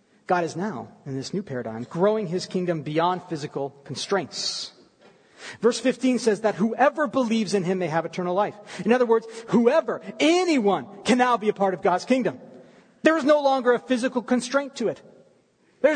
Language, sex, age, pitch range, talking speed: English, male, 40-59, 195-280 Hz, 180 wpm